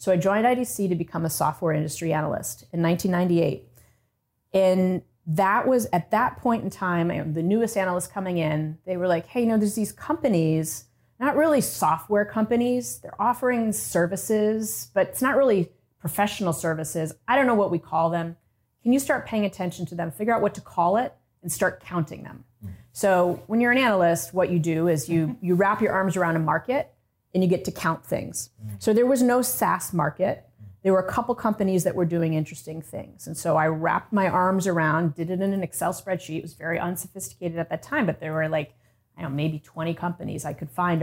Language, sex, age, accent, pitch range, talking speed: English, female, 30-49, American, 155-195 Hz, 210 wpm